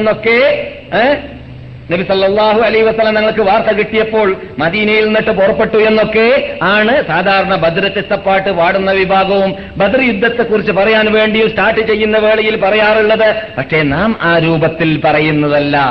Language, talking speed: Malayalam, 105 wpm